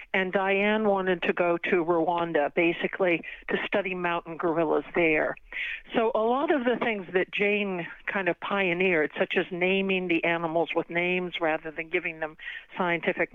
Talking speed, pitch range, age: 160 wpm, 170-195 Hz, 60-79